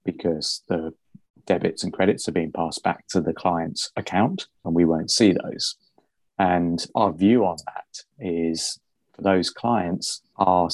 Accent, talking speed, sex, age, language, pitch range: British, 155 wpm, male, 30-49, English, 85-100 Hz